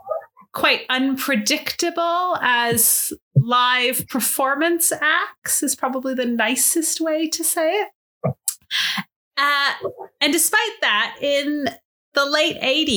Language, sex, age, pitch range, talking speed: English, female, 30-49, 200-285 Hz, 95 wpm